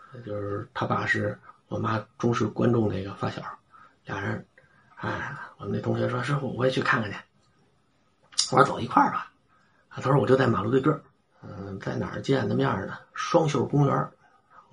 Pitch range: 110-140 Hz